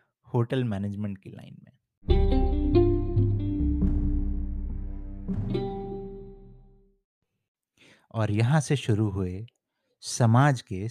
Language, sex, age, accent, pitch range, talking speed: Hindi, male, 30-49, native, 110-155 Hz, 65 wpm